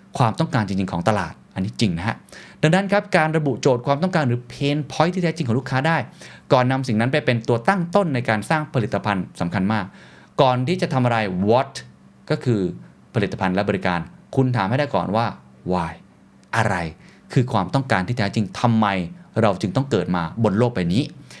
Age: 20-39